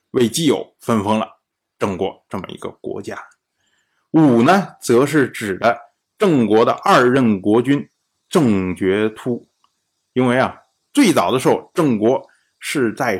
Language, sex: Chinese, male